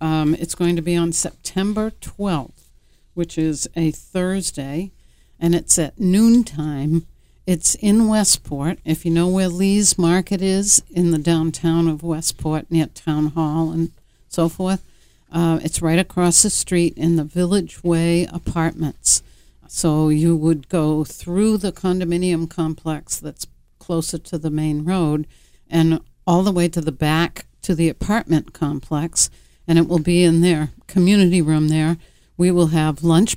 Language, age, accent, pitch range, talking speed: English, 60-79, American, 160-180 Hz, 155 wpm